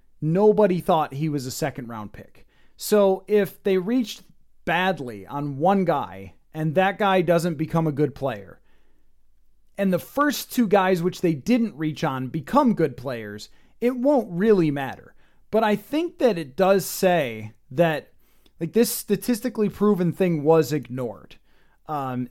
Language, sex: English, male